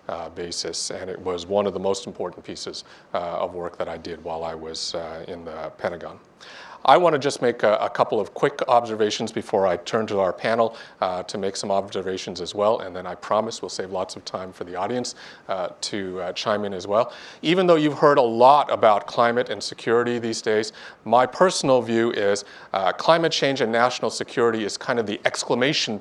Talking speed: 215 wpm